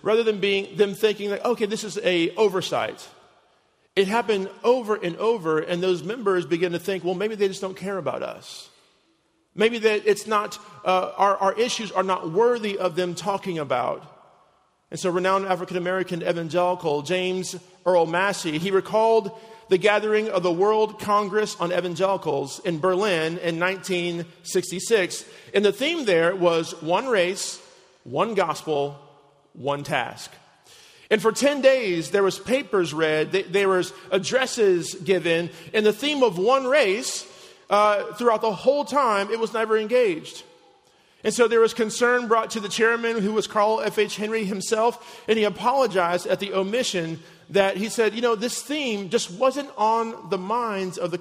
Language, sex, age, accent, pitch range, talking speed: English, male, 40-59, American, 180-225 Hz, 165 wpm